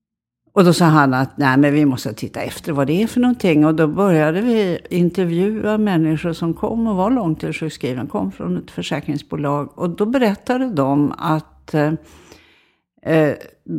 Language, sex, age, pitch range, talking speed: Swedish, female, 60-79, 145-190 Hz, 170 wpm